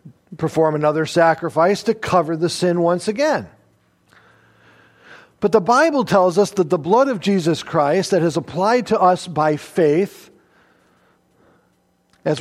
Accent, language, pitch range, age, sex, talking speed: American, English, 165-215 Hz, 50-69, male, 135 wpm